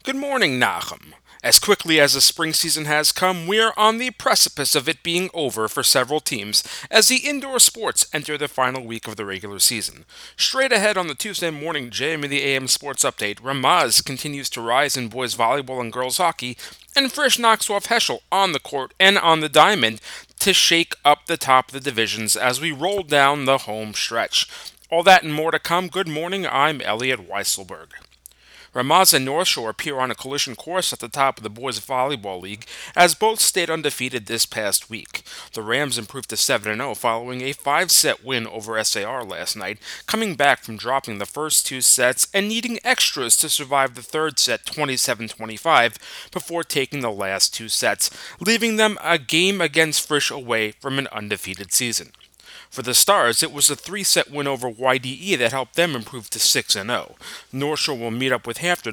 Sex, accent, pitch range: male, American, 120-170 Hz